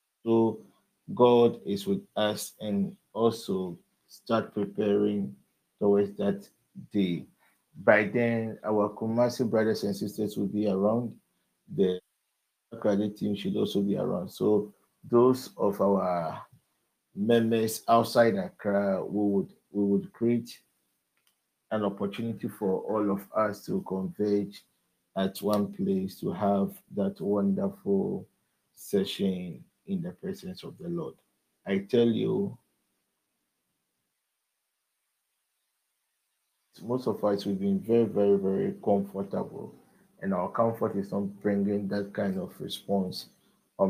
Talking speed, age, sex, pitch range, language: 115 wpm, 50-69, male, 100-120 Hz, English